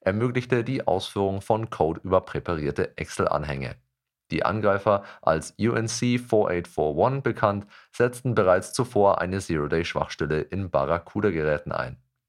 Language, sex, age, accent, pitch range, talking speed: German, male, 40-59, German, 90-120 Hz, 105 wpm